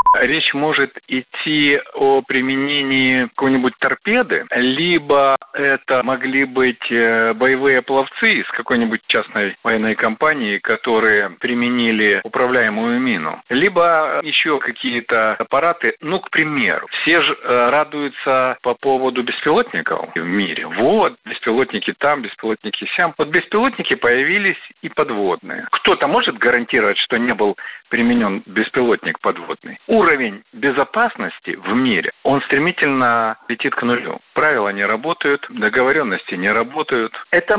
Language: Russian